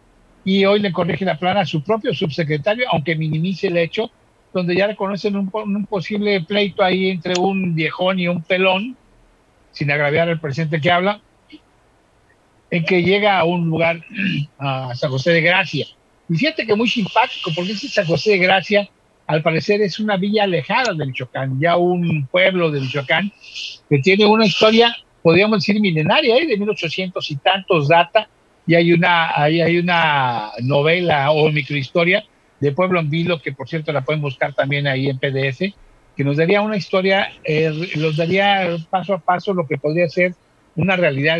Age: 60-79